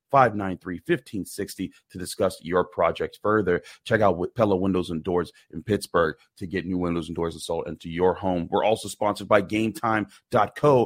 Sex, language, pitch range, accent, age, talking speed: male, English, 95-120 Hz, American, 30-49, 165 wpm